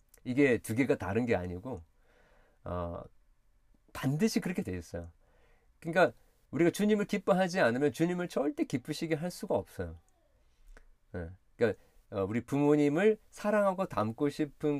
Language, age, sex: Korean, 40-59, male